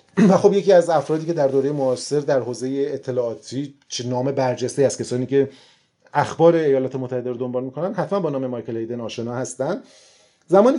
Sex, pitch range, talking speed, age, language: male, 125-170 Hz, 185 wpm, 30-49, Persian